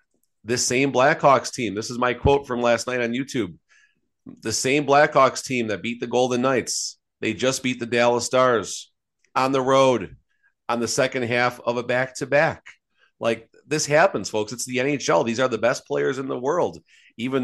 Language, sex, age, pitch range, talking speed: English, male, 40-59, 105-130 Hz, 185 wpm